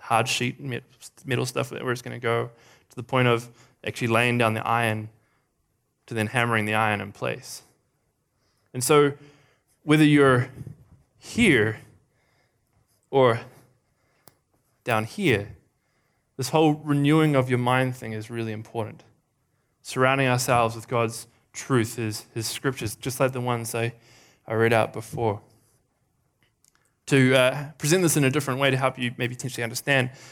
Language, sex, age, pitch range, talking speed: English, male, 20-39, 115-140 Hz, 145 wpm